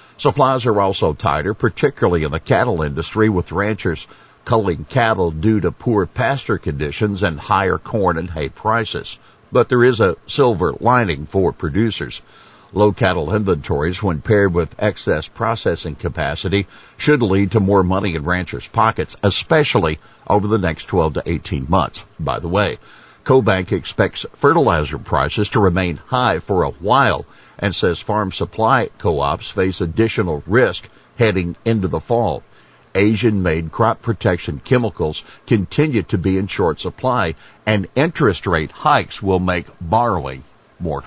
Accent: American